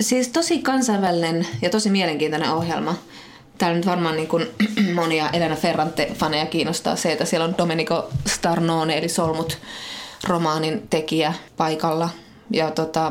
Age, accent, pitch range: 20-39, native, 150-190 Hz